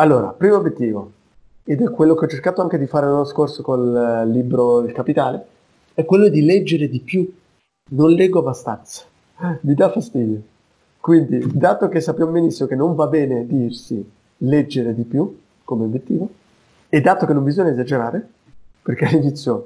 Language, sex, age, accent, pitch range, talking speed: Italian, male, 30-49, native, 120-160 Hz, 165 wpm